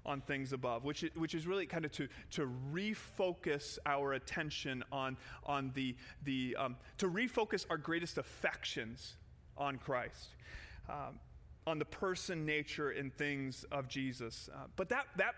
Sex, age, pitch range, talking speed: male, 30-49, 135-165 Hz, 150 wpm